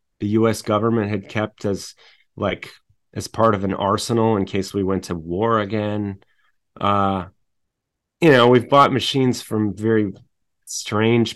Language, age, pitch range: English, 30-49, 95-115 Hz